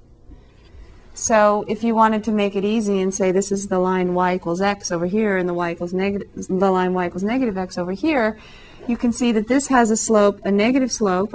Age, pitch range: 40-59, 195-235 Hz